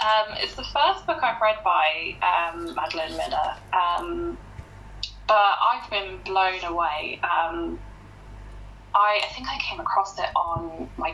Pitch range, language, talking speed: 160-205 Hz, English, 140 wpm